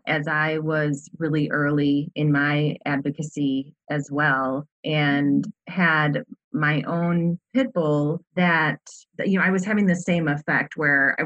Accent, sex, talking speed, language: American, female, 140 wpm, English